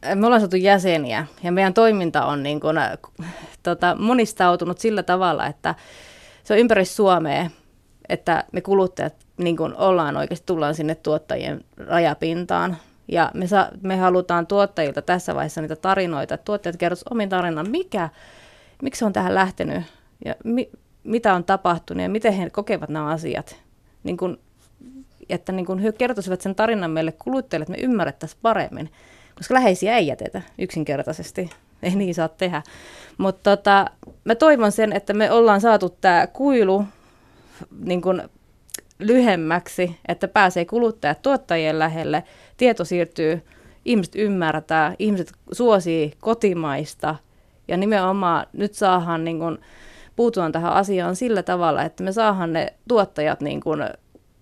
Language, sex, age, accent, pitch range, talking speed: Finnish, female, 30-49, native, 165-210 Hz, 140 wpm